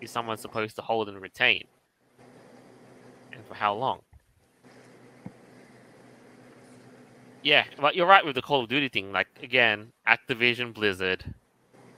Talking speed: 120 wpm